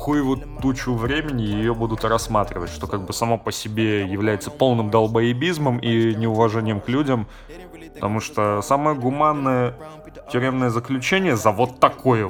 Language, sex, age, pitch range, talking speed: Russian, male, 20-39, 105-130 Hz, 135 wpm